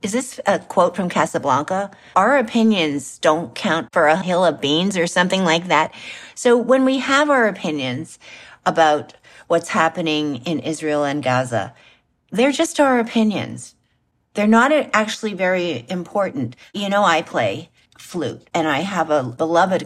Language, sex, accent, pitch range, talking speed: English, female, American, 170-245 Hz, 155 wpm